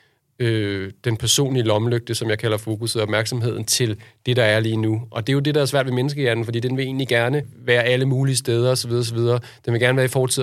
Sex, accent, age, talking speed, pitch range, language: male, native, 30-49, 245 wpm, 115-125 Hz, Danish